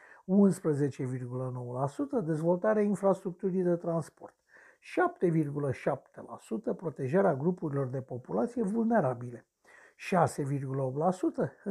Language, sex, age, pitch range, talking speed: Romanian, male, 60-79, 140-195 Hz, 55 wpm